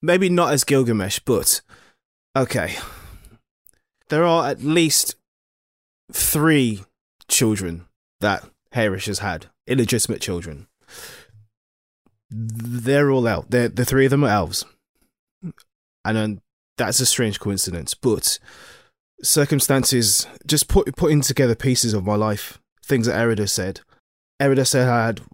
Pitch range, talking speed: 90-125 Hz, 125 wpm